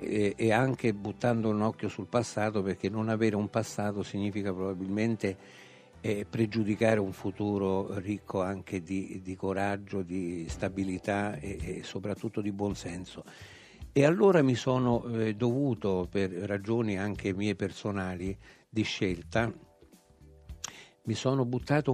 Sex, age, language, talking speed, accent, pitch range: male, 60-79, Italian, 125 wpm, native, 100-115 Hz